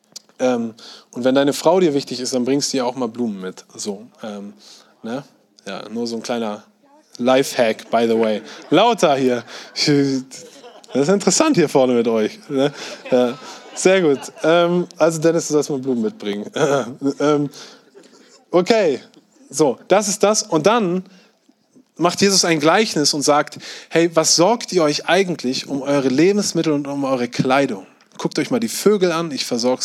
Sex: male